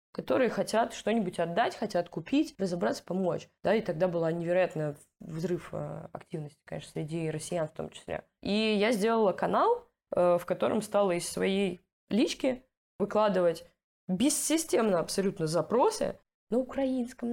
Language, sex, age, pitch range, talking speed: Russian, female, 20-39, 175-220 Hz, 130 wpm